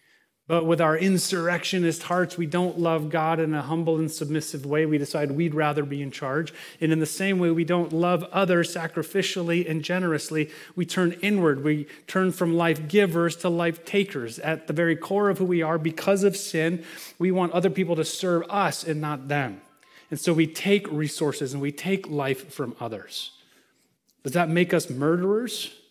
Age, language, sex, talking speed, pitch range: 30-49, English, male, 190 wpm, 155-190 Hz